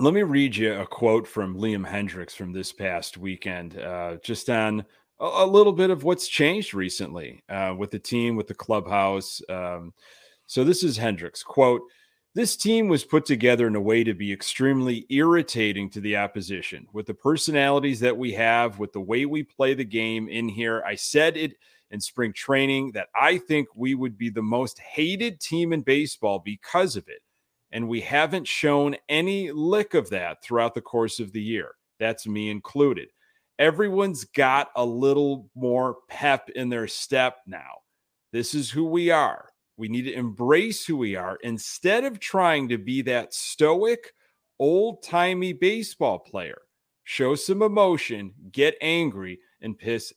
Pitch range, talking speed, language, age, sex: 105-155 Hz, 170 wpm, English, 30-49, male